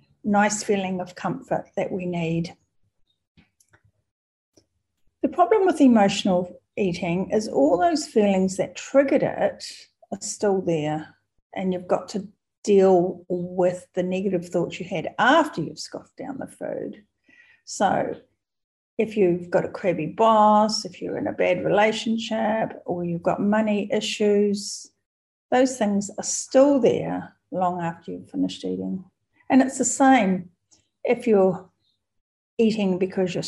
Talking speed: 135 wpm